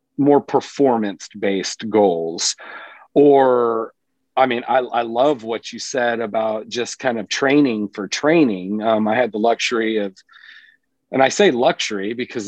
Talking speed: 150 wpm